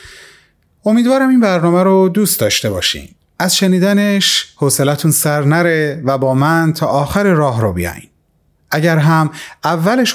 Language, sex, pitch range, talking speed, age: Persian, male, 130-170 Hz, 135 wpm, 30-49